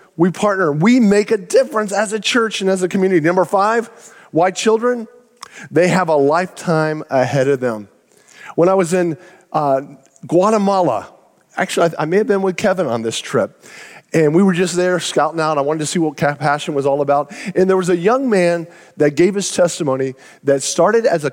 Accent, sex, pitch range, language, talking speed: American, male, 150-195 Hz, English, 200 wpm